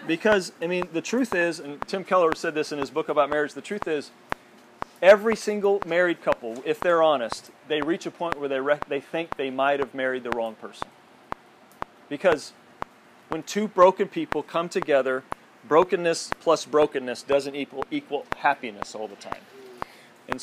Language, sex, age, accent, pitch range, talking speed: English, male, 40-59, American, 140-175 Hz, 175 wpm